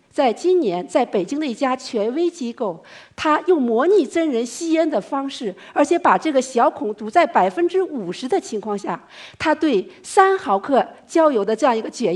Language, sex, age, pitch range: Chinese, female, 50-69, 210-320 Hz